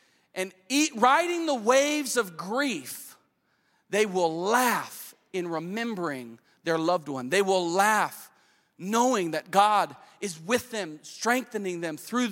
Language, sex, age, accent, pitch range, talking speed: English, male, 40-59, American, 135-215 Hz, 125 wpm